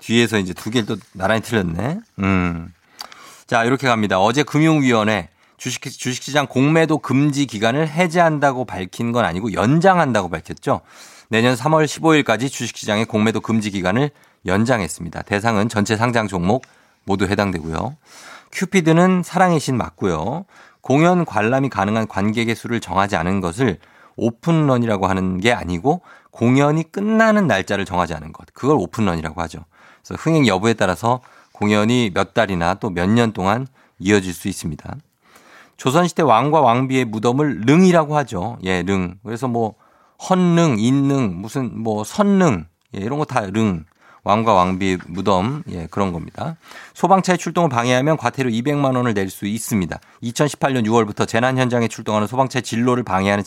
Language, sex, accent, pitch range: Korean, male, native, 100-140 Hz